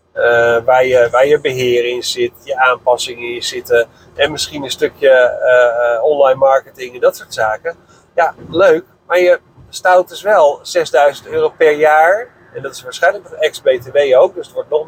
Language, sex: Dutch, male